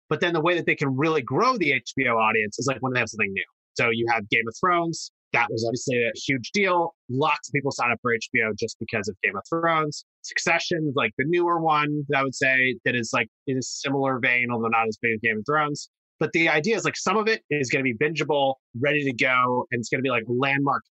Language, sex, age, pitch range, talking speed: English, male, 30-49, 120-155 Hz, 260 wpm